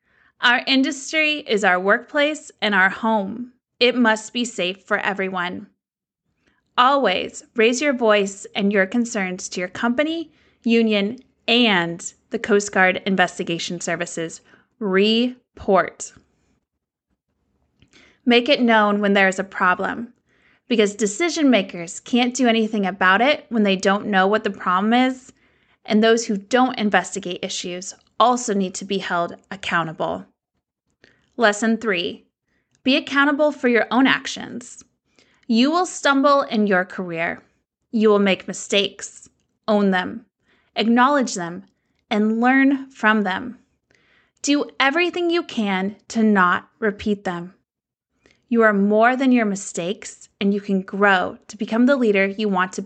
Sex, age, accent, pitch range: female, 20-39, American, 190-245 Hz